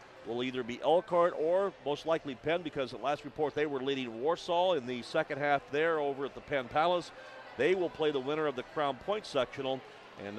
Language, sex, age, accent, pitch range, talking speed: English, male, 40-59, American, 130-165 Hz, 215 wpm